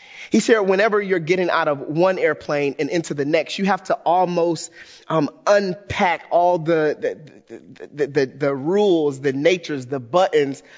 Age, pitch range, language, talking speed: 30-49, 145-195 Hz, English, 155 wpm